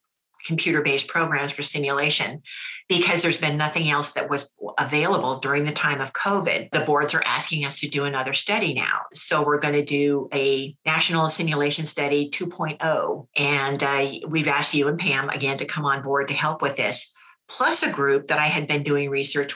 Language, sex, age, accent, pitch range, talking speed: English, female, 50-69, American, 140-160 Hz, 190 wpm